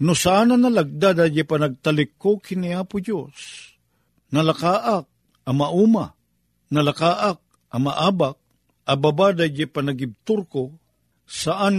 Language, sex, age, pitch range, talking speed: Filipino, male, 50-69, 125-175 Hz, 95 wpm